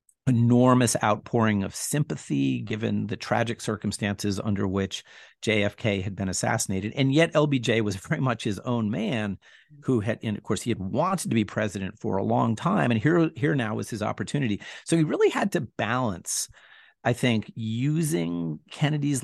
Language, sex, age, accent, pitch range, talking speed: English, male, 50-69, American, 100-125 Hz, 170 wpm